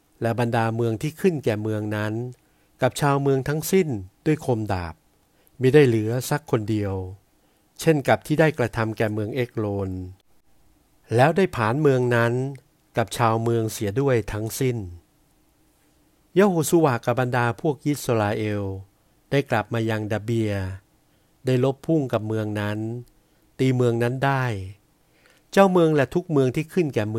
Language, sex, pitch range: Thai, male, 105-140 Hz